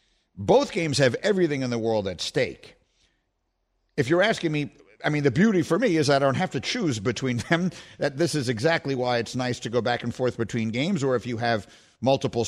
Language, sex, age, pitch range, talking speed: English, male, 50-69, 120-150 Hz, 225 wpm